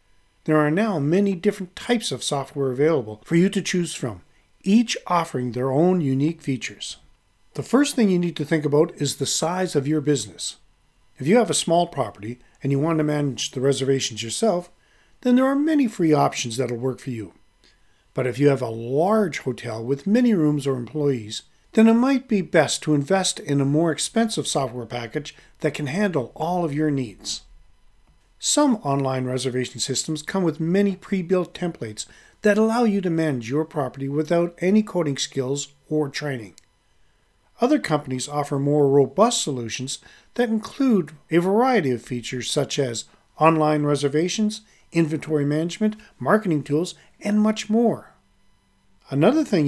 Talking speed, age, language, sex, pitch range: 165 wpm, 40-59, English, male, 125-185 Hz